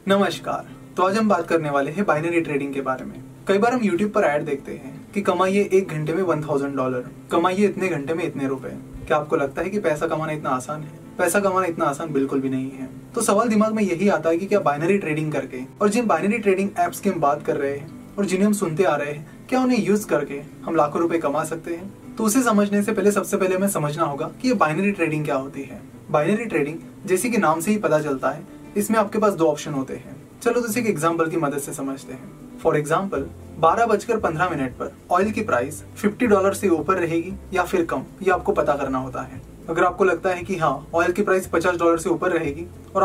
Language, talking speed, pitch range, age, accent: Hindi, 245 wpm, 145-200 Hz, 20-39, native